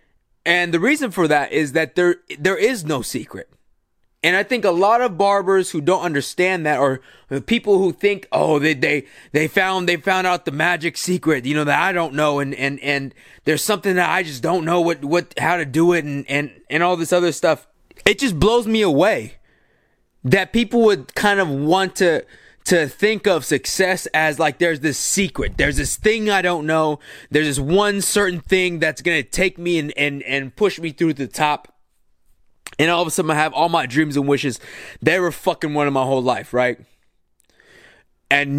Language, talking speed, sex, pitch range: English, 210 wpm, male, 150-195 Hz